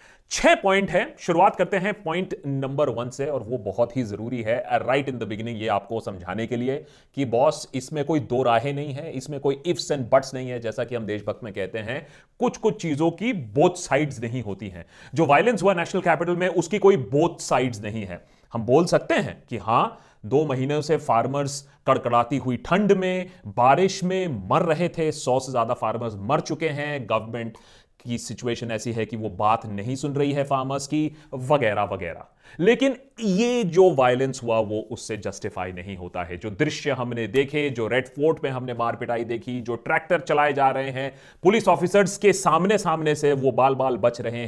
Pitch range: 120-160 Hz